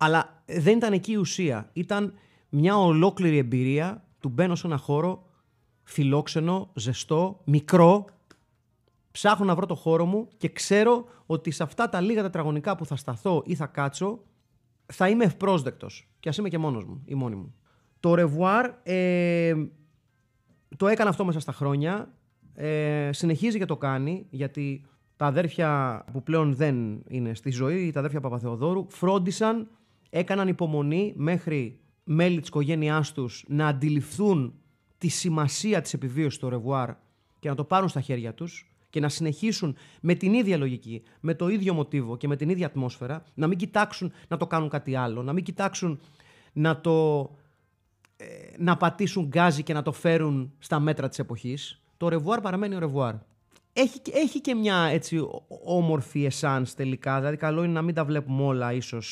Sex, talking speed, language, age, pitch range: male, 165 wpm, Greek, 30-49, 135-180 Hz